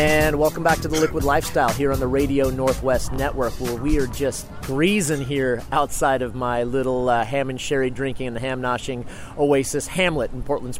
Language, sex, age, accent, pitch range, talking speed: English, male, 30-49, American, 125-150 Hz, 195 wpm